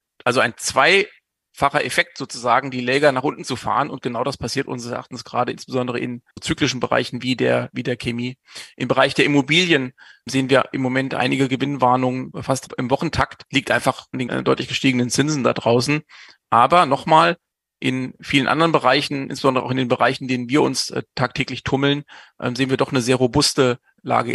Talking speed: 180 wpm